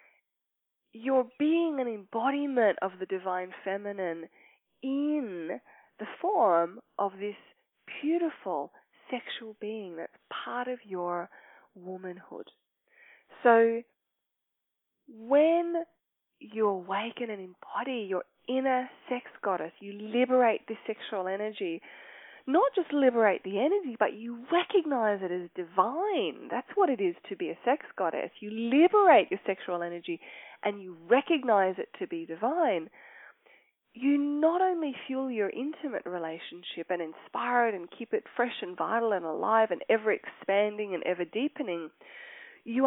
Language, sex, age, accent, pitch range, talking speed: English, female, 20-39, Australian, 185-275 Hz, 130 wpm